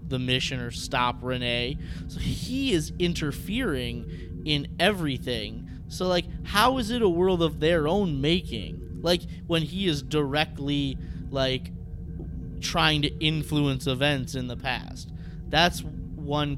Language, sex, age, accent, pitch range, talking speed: English, male, 20-39, American, 120-175 Hz, 135 wpm